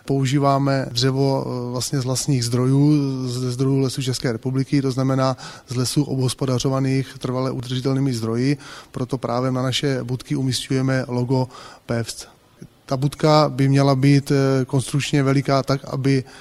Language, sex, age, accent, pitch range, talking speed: Czech, male, 30-49, native, 125-140 Hz, 130 wpm